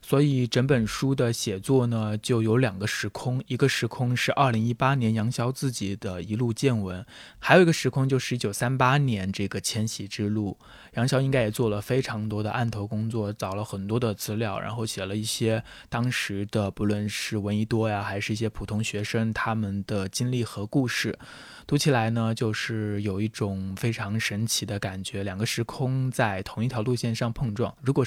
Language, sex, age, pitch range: Chinese, male, 20-39, 100-120 Hz